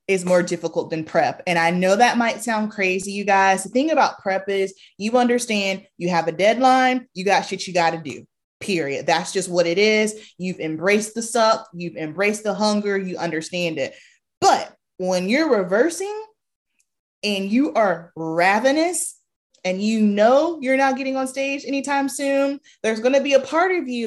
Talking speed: 185 wpm